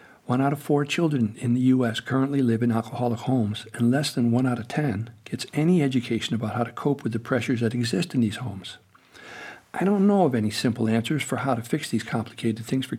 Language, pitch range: English, 115-145 Hz